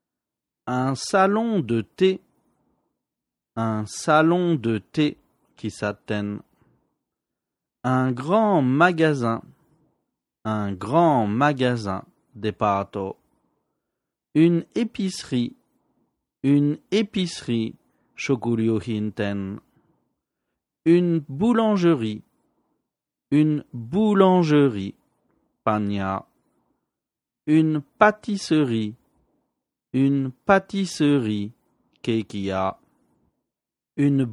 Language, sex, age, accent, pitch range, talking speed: French, male, 40-59, French, 105-165 Hz, 60 wpm